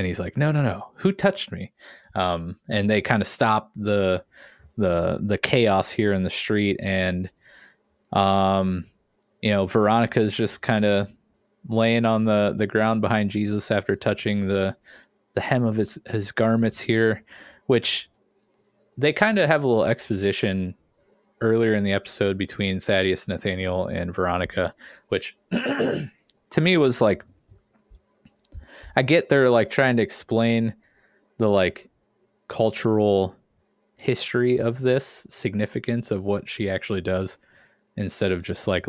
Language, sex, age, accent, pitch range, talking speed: English, male, 20-39, American, 95-115 Hz, 145 wpm